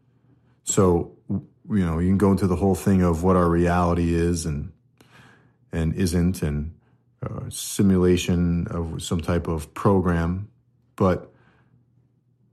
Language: English